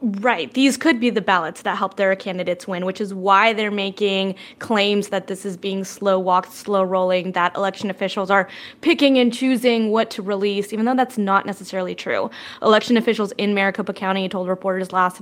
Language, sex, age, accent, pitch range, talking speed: English, female, 20-39, American, 190-225 Hz, 195 wpm